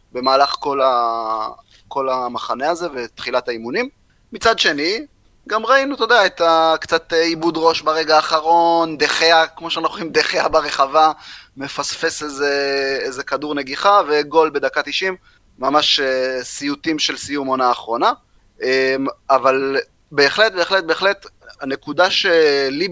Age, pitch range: 30-49, 135-190 Hz